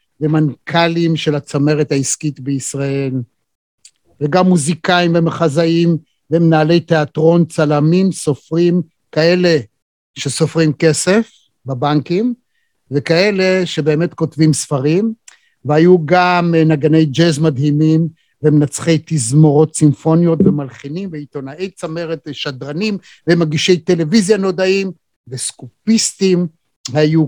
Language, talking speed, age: Hebrew, 80 wpm, 50-69